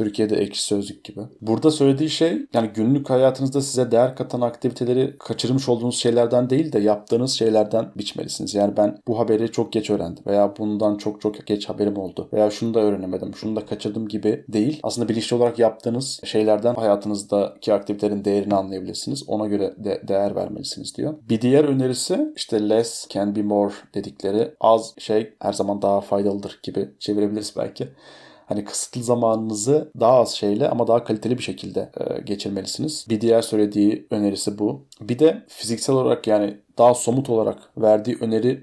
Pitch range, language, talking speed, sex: 105-120 Hz, Turkish, 165 wpm, male